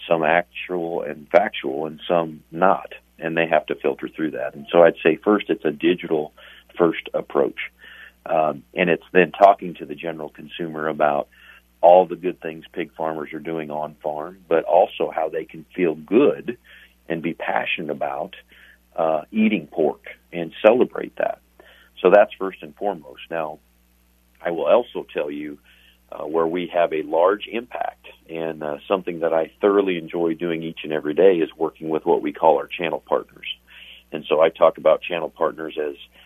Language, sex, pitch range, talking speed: English, male, 75-85 Hz, 180 wpm